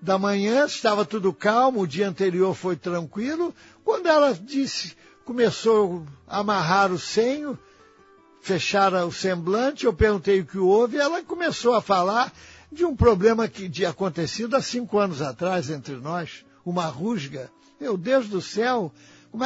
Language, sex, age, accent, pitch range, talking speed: Portuguese, male, 60-79, Brazilian, 170-230 Hz, 155 wpm